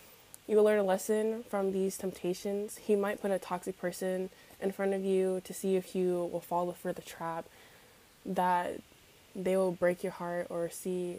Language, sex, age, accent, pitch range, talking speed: English, female, 10-29, American, 180-200 Hz, 190 wpm